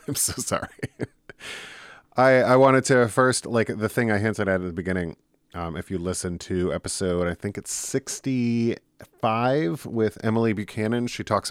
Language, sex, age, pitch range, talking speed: English, male, 30-49, 85-105 Hz, 165 wpm